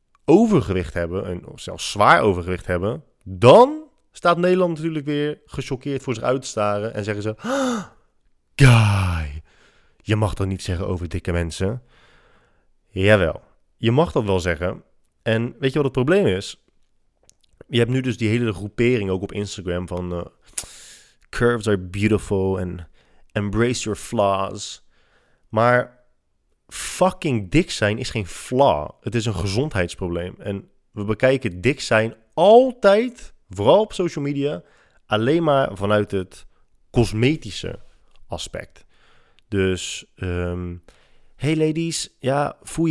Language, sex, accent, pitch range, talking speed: Dutch, male, Dutch, 95-135 Hz, 135 wpm